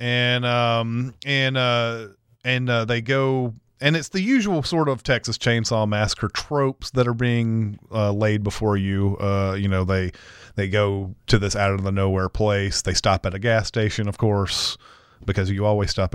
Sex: male